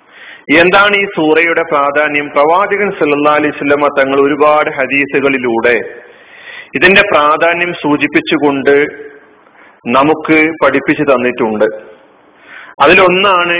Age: 40-59